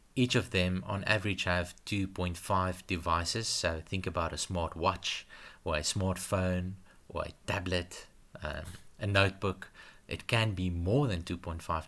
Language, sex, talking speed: English, male, 145 wpm